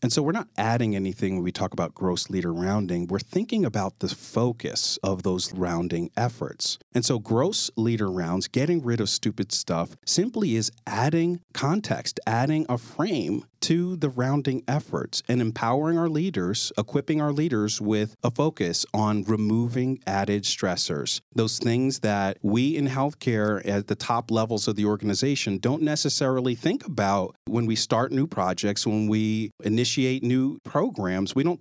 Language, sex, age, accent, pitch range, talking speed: English, male, 40-59, American, 100-130 Hz, 165 wpm